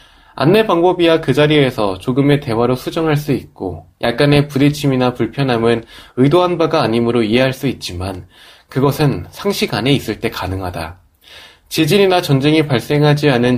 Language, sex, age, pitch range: Korean, male, 20-39, 110-150 Hz